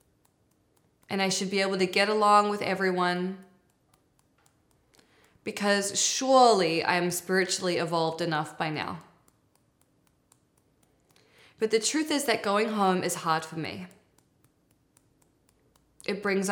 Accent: American